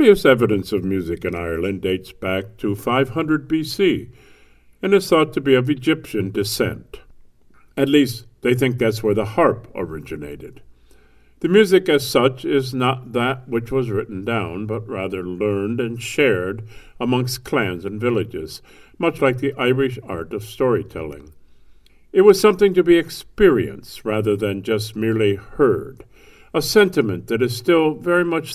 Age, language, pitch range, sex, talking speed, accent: 50-69, English, 105-145 Hz, male, 150 wpm, American